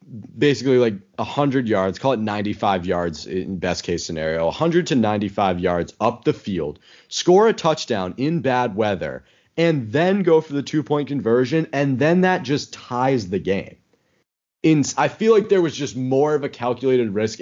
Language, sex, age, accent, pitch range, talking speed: English, male, 30-49, American, 115-145 Hz, 175 wpm